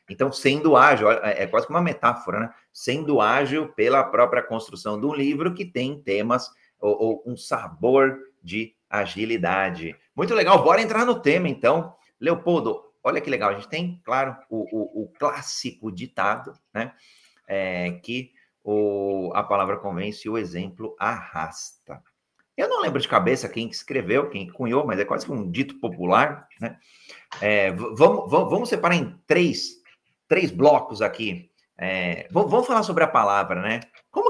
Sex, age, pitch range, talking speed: male, 30-49, 100-145 Hz, 160 wpm